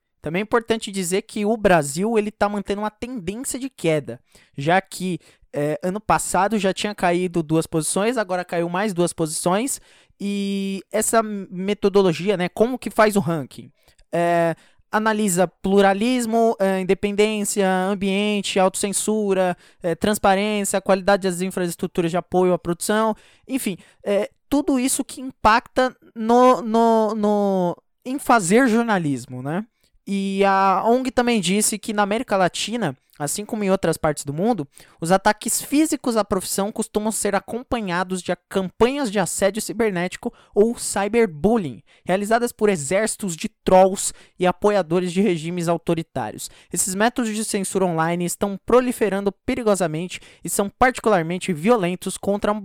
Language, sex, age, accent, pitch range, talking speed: Portuguese, male, 20-39, Brazilian, 180-220 Hz, 135 wpm